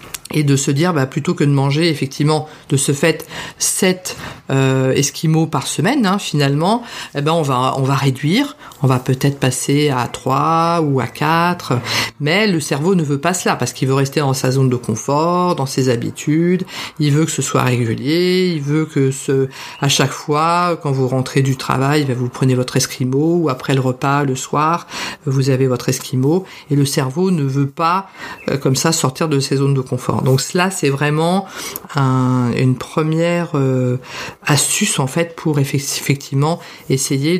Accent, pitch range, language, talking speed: French, 135-165 Hz, French, 185 wpm